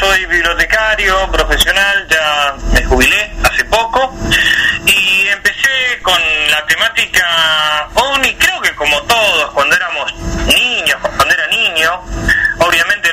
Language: Spanish